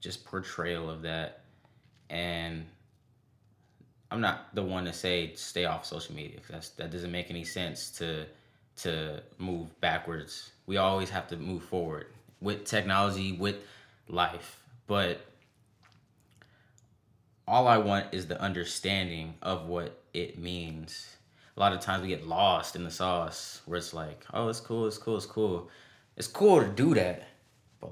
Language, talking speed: English, 155 wpm